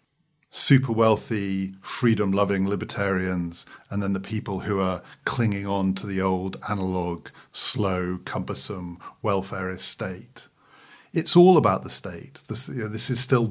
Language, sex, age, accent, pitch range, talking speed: English, male, 40-59, British, 95-130 Hz, 130 wpm